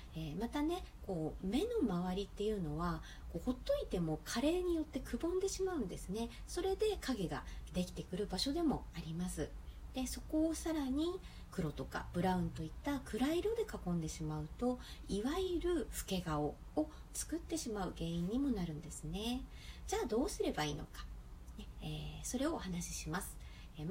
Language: Japanese